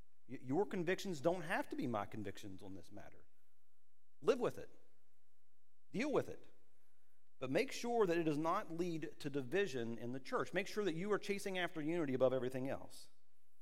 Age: 40-59